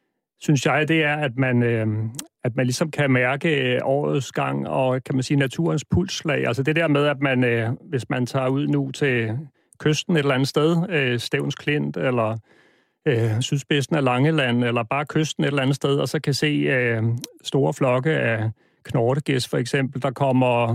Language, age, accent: Danish, 40-59, native